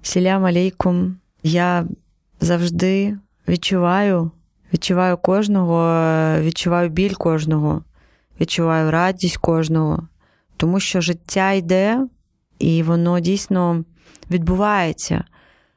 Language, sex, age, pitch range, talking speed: Ukrainian, female, 20-39, 155-180 Hz, 80 wpm